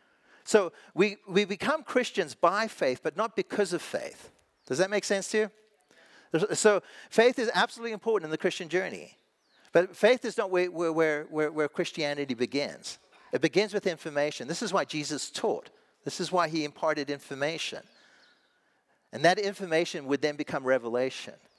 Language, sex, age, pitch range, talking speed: English, male, 50-69, 150-215 Hz, 165 wpm